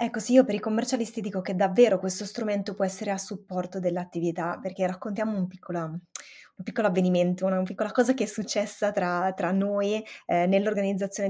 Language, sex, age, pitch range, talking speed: Italian, female, 20-39, 185-230 Hz, 175 wpm